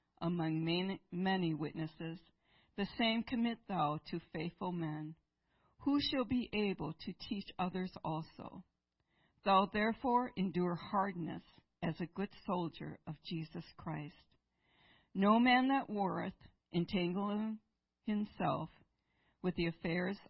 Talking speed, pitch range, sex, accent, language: 110 wpm, 160-210 Hz, female, American, English